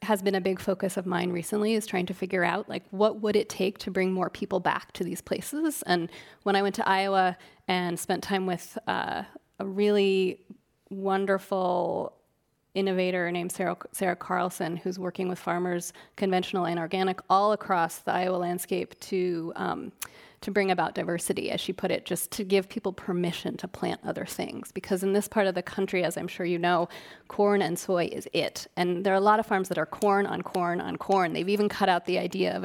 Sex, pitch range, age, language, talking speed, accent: female, 180-215 Hz, 30-49, English, 210 wpm, American